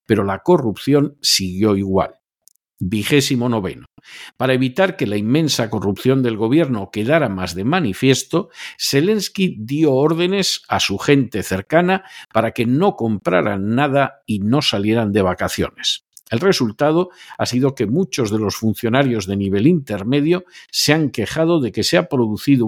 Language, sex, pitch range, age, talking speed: Spanish, male, 110-145 Hz, 50-69, 150 wpm